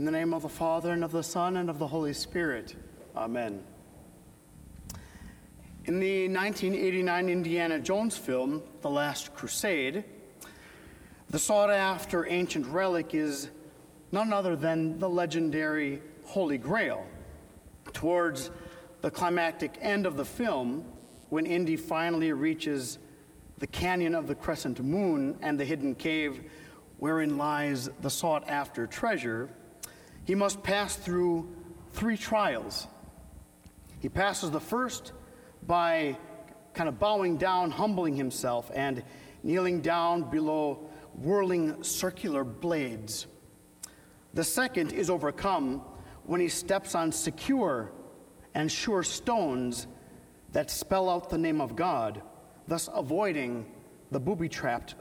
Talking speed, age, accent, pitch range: 120 wpm, 40-59, American, 145-180 Hz